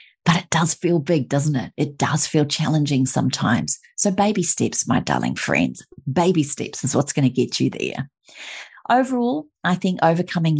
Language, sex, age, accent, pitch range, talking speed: English, female, 40-59, Australian, 135-160 Hz, 175 wpm